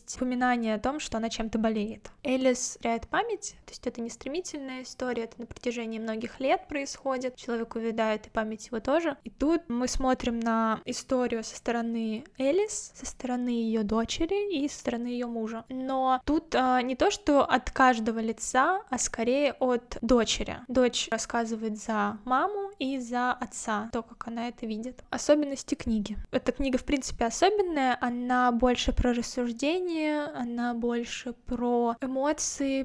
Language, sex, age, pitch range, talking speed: Russian, female, 10-29, 235-270 Hz, 155 wpm